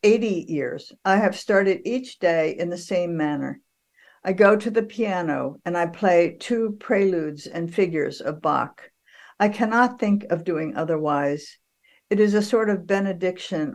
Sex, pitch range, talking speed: female, 170-215 Hz, 160 wpm